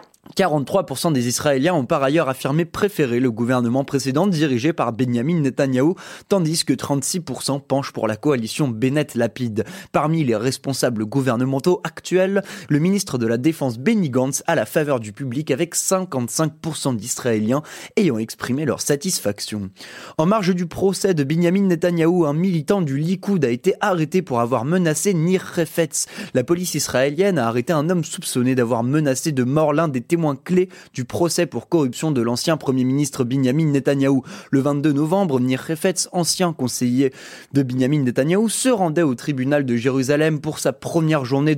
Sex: male